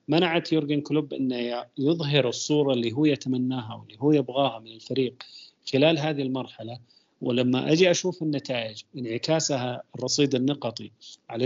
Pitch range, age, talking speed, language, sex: 120-145 Hz, 40-59, 130 wpm, Arabic, male